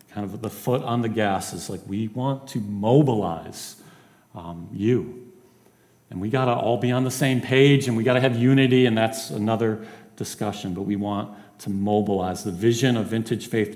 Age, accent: 40-59, American